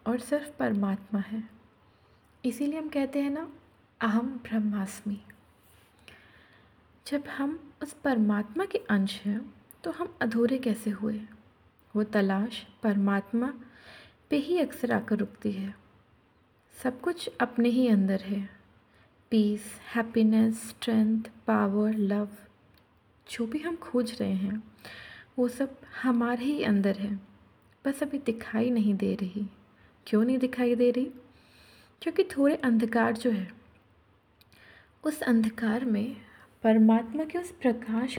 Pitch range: 205-250 Hz